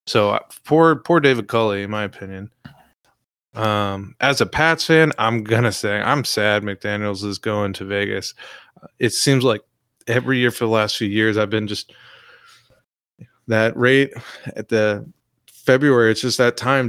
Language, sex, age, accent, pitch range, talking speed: English, male, 20-39, American, 105-125 Hz, 165 wpm